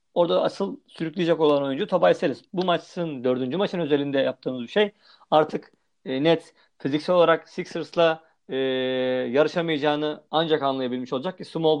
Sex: male